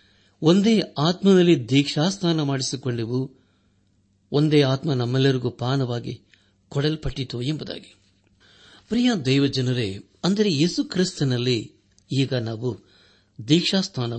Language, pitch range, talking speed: Kannada, 100-150 Hz, 75 wpm